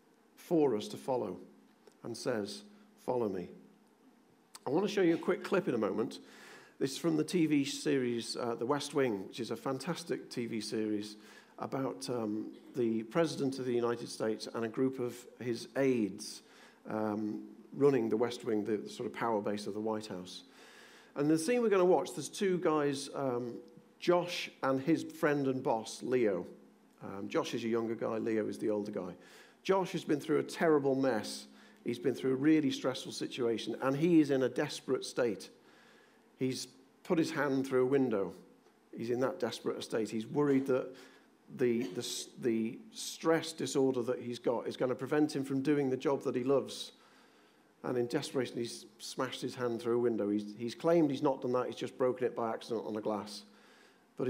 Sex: male